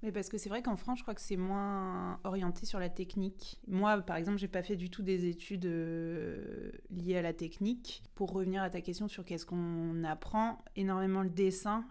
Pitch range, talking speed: 170-200 Hz, 215 wpm